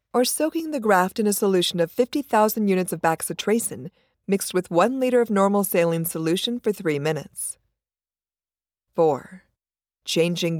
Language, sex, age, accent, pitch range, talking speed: English, female, 50-69, American, 170-235 Hz, 140 wpm